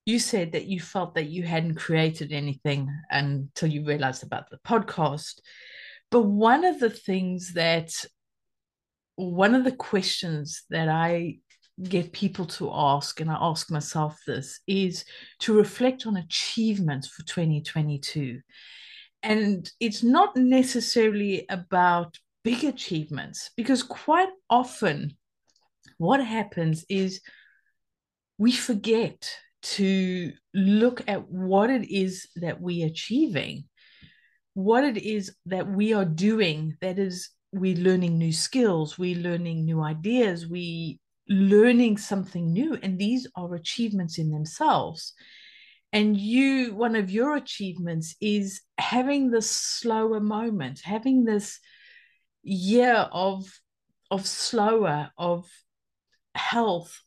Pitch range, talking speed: 165-230 Hz, 120 wpm